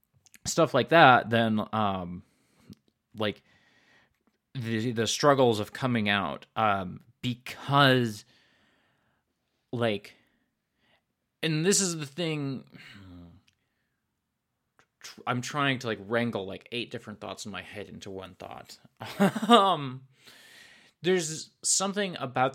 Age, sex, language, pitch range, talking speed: 20-39, male, English, 105-150 Hz, 105 wpm